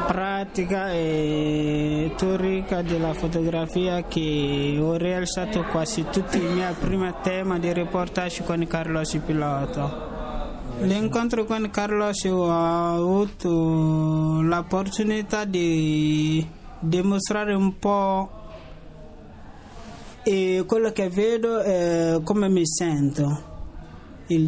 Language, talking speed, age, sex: Italian, 90 wpm, 20-39, male